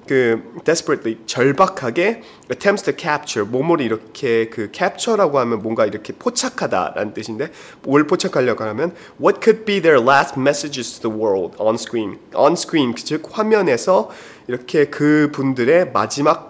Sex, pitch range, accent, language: male, 115-185 Hz, Korean, English